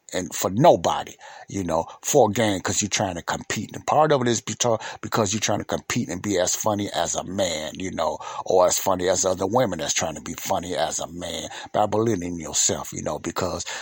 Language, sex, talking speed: English, male, 230 wpm